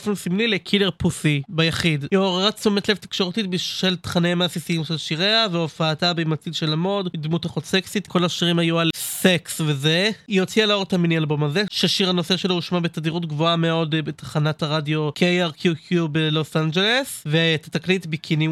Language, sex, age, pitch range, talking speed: Hebrew, male, 20-39, 165-190 Hz, 160 wpm